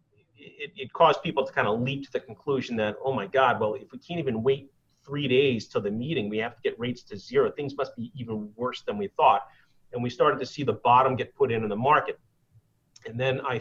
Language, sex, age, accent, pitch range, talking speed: English, male, 30-49, American, 120-165 Hz, 250 wpm